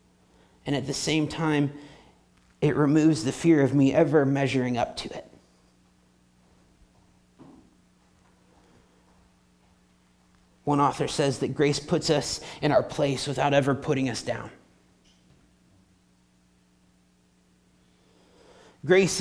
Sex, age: male, 30-49